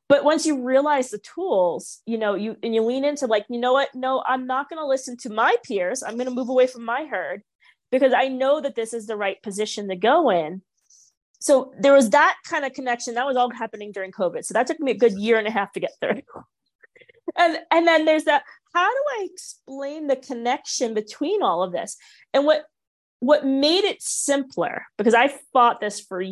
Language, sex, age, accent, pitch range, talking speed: English, female, 30-49, American, 215-295 Hz, 225 wpm